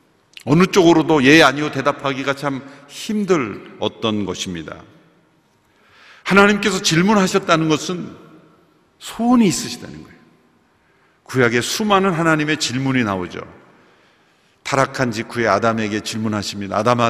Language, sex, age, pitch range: Korean, male, 50-69, 120-200 Hz